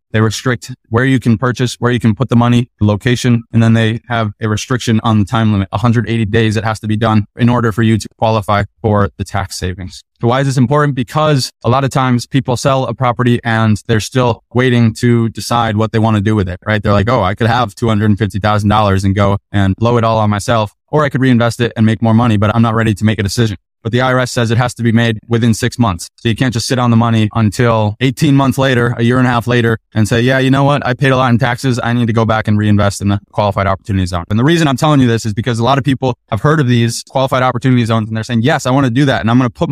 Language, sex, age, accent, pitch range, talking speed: English, male, 20-39, American, 110-125 Hz, 285 wpm